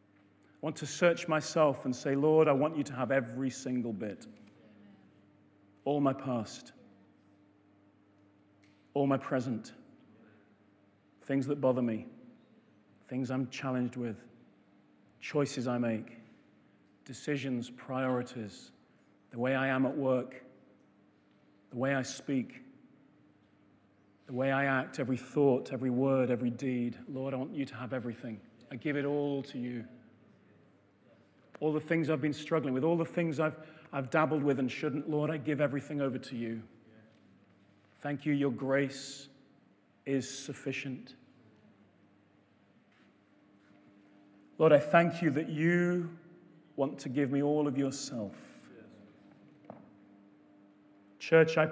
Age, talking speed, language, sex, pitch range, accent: 40-59, 130 wpm, English, male, 110-150 Hz, British